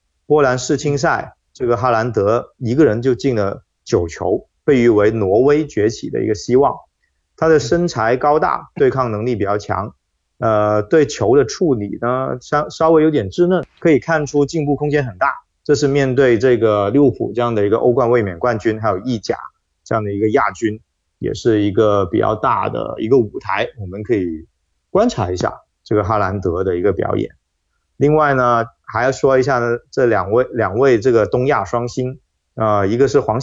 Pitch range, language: 105-140 Hz, Chinese